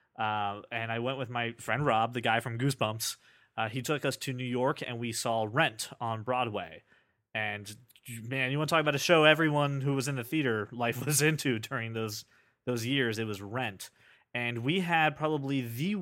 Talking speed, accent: 205 wpm, American